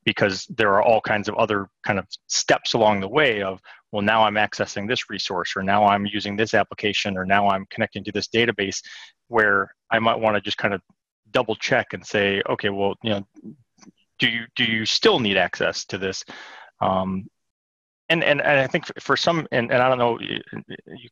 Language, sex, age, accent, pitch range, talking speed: English, male, 30-49, American, 100-115 Hz, 205 wpm